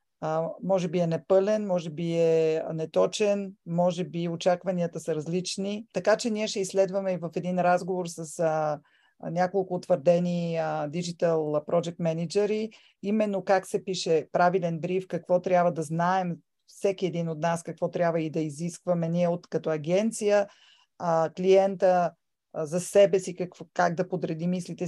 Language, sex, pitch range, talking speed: Bulgarian, female, 170-195 Hz, 155 wpm